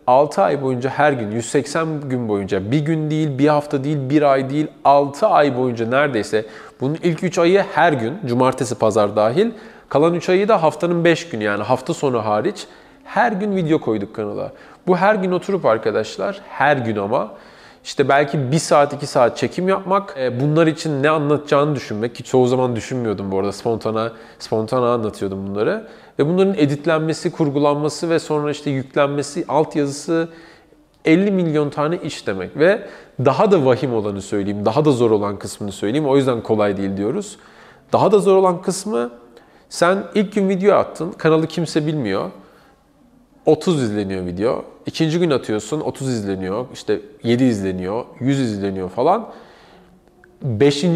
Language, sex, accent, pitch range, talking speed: Turkish, male, native, 120-170 Hz, 160 wpm